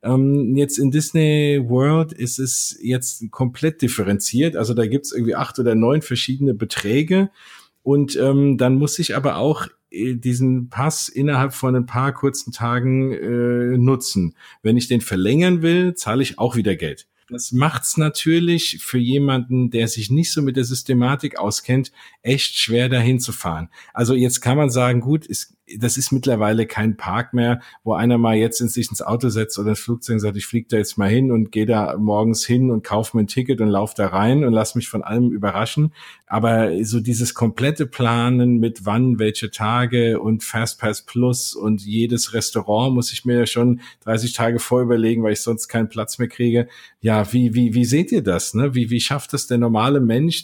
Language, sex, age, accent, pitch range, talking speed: German, male, 50-69, German, 115-130 Hz, 195 wpm